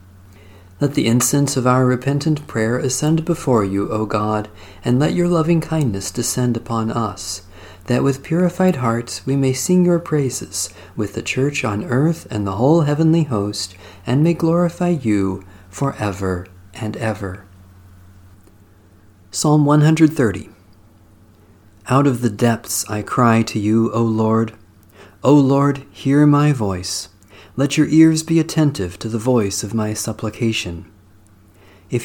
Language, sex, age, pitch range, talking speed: English, male, 40-59, 100-135 Hz, 140 wpm